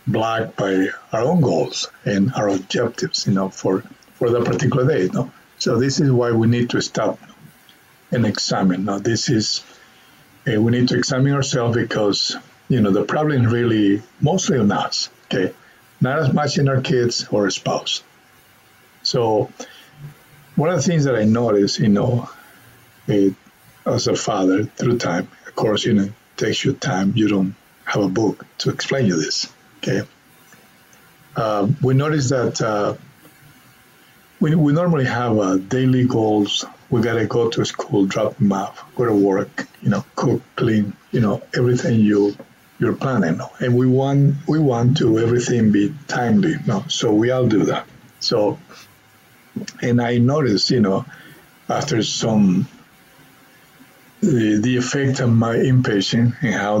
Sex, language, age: male, English, 50-69